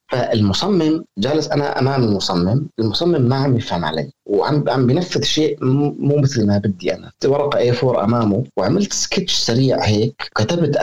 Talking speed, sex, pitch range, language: 150 wpm, male, 115-150 Hz, Arabic